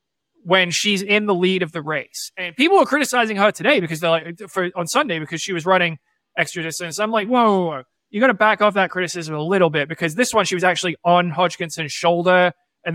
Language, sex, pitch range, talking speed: English, male, 160-190 Hz, 235 wpm